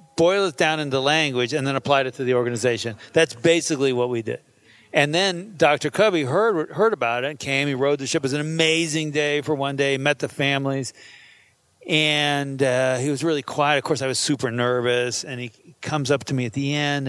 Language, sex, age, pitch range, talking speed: English, male, 40-59, 125-155 Hz, 220 wpm